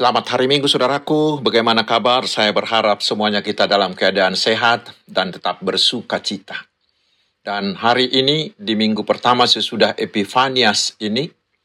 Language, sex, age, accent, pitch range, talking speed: Indonesian, male, 50-69, native, 110-135 Hz, 135 wpm